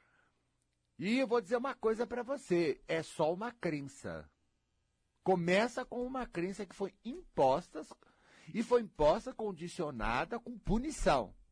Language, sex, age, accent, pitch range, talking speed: Portuguese, male, 60-79, Brazilian, 130-215 Hz, 130 wpm